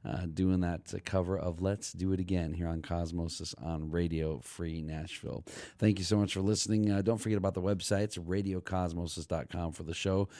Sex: male